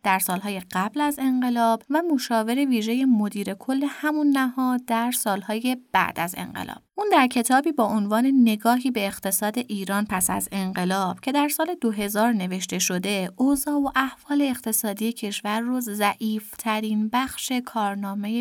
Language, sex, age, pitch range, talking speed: Persian, female, 20-39, 200-260 Hz, 145 wpm